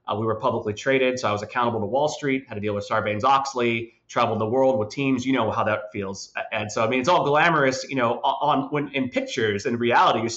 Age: 30-49